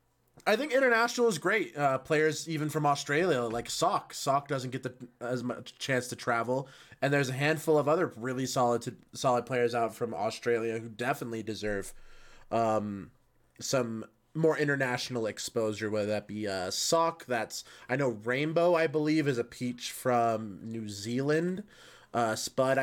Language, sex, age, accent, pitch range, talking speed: English, male, 20-39, American, 115-150 Hz, 165 wpm